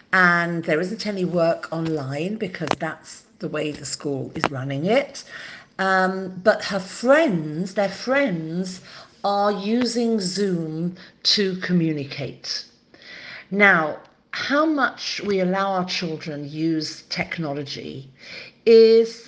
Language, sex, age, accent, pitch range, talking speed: English, female, 50-69, British, 160-220 Hz, 110 wpm